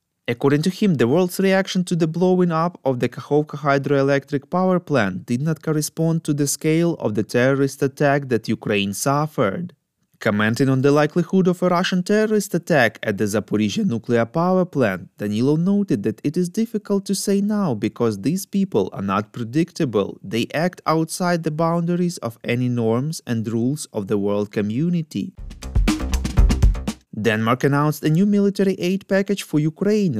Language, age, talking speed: English, 20-39, 165 wpm